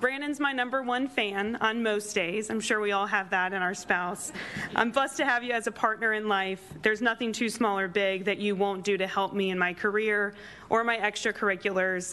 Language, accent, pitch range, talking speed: English, American, 195-225 Hz, 230 wpm